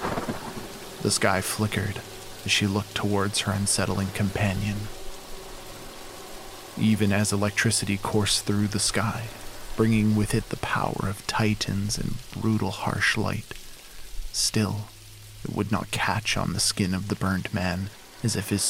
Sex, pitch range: male, 100-110 Hz